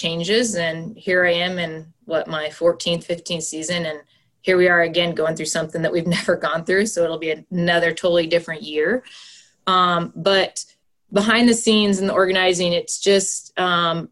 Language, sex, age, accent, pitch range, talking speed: English, female, 20-39, American, 165-185 Hz, 175 wpm